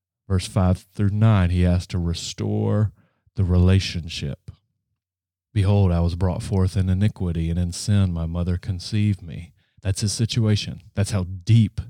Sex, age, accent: male, 30-49, American